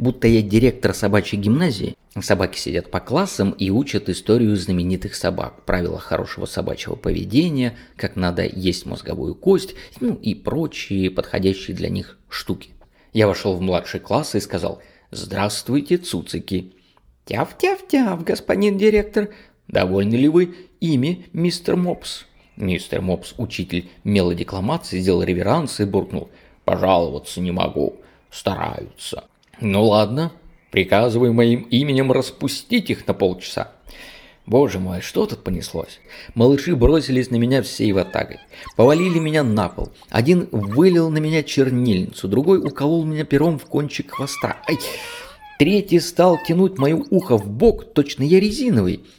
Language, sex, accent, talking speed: Russian, male, native, 130 wpm